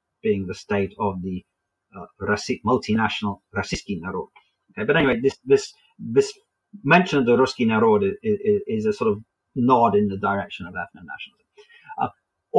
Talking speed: 160 wpm